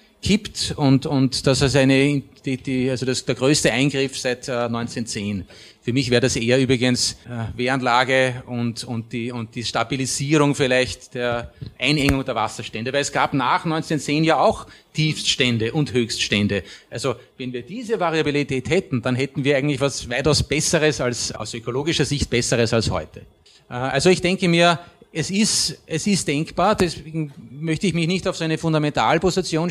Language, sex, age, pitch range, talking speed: German, male, 30-49, 130-165 Hz, 165 wpm